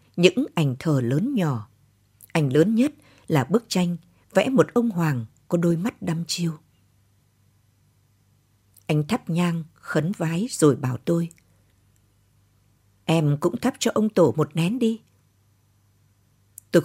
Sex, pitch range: female, 105-170 Hz